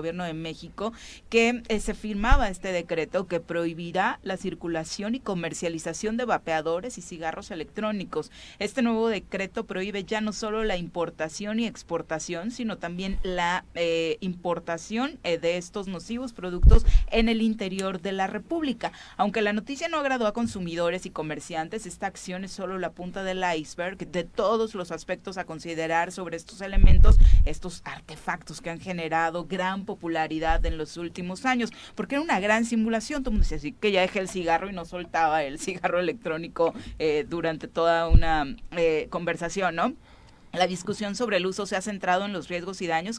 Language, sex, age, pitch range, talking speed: Spanish, female, 40-59, 165-200 Hz, 175 wpm